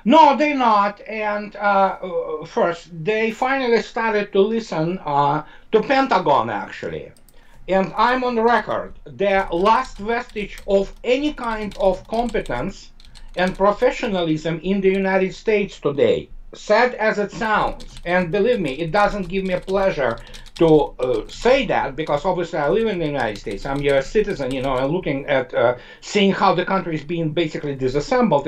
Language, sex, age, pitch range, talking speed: English, male, 60-79, 170-230 Hz, 160 wpm